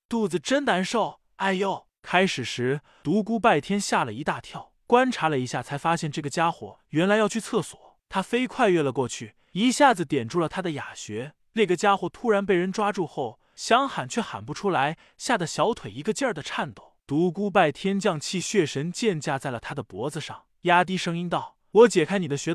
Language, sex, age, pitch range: Chinese, male, 20-39, 145-205 Hz